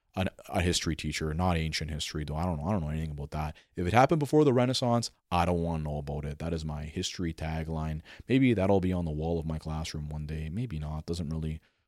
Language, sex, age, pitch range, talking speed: English, male, 30-49, 85-120 Hz, 255 wpm